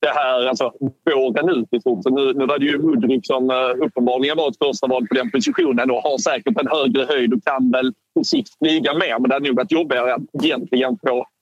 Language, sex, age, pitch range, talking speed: Swedish, male, 30-49, 130-200 Hz, 250 wpm